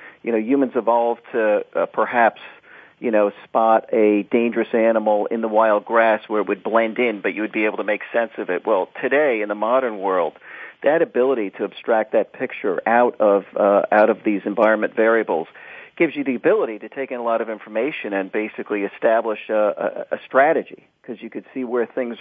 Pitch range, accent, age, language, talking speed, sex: 110-130 Hz, American, 50-69, English, 205 wpm, male